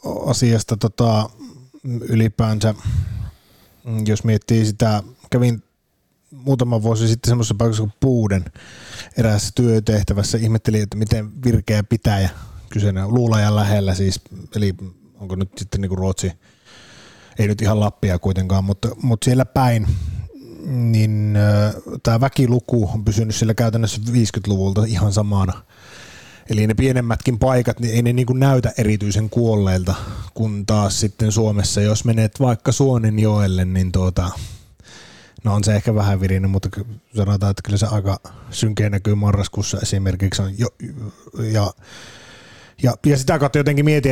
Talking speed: 135 wpm